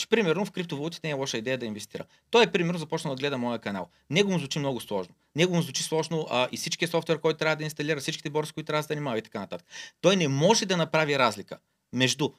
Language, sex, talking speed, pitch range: Bulgarian, male, 250 wpm, 140-180 Hz